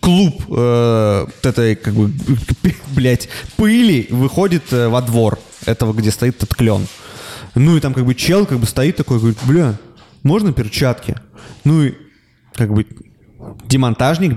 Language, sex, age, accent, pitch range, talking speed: Russian, male, 20-39, native, 110-135 Hz, 140 wpm